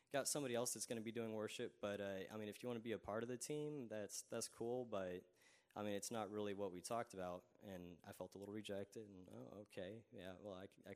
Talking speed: 265 wpm